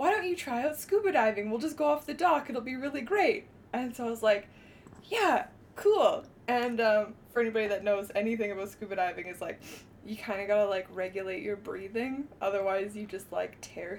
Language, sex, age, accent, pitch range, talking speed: English, female, 20-39, American, 205-305 Hz, 215 wpm